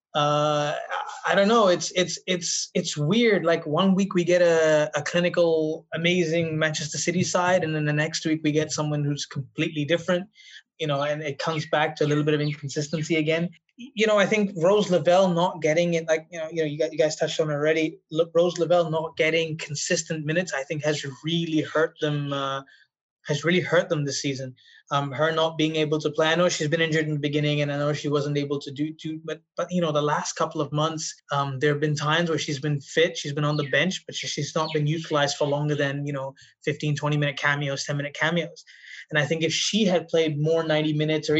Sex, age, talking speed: male, 20-39, 235 wpm